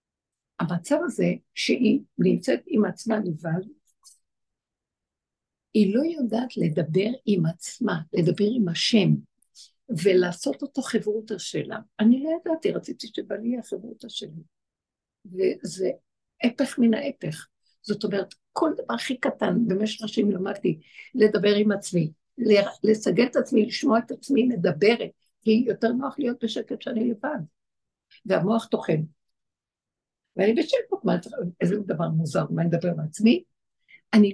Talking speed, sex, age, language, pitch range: 120 wpm, female, 60-79, Hebrew, 190-250 Hz